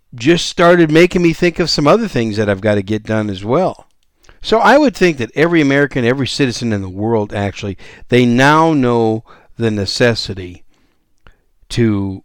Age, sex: 50-69, male